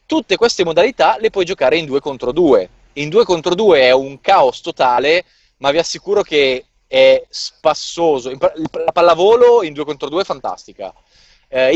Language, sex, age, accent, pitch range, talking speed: Italian, male, 20-39, native, 145-190 Hz, 170 wpm